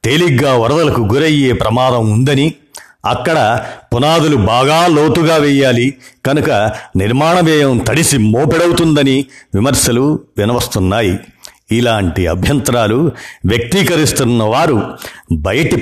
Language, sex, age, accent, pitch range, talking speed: Telugu, male, 50-69, native, 110-150 Hz, 80 wpm